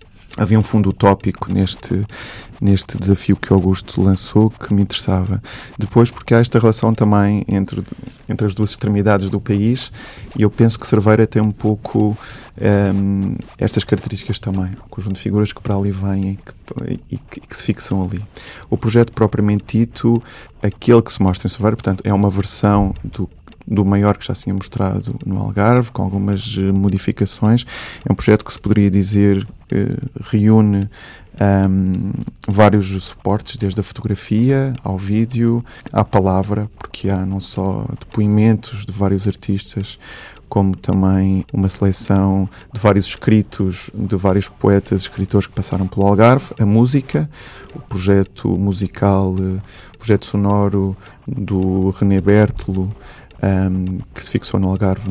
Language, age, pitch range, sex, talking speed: Portuguese, 20-39, 95-110 Hz, male, 150 wpm